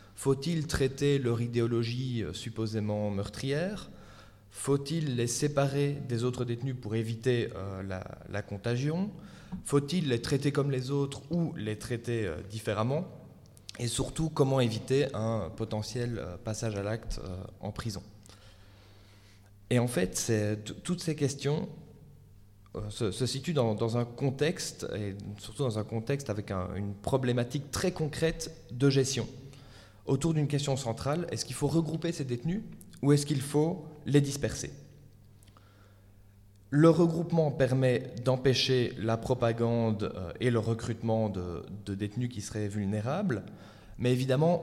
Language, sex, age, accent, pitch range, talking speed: French, male, 20-39, French, 105-140 Hz, 130 wpm